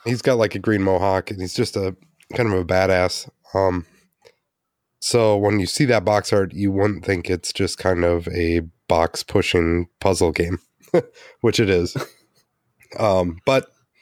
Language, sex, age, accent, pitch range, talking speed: English, male, 30-49, American, 90-110 Hz, 165 wpm